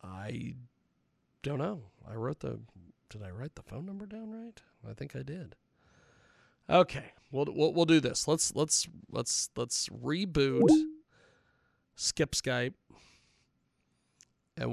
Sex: male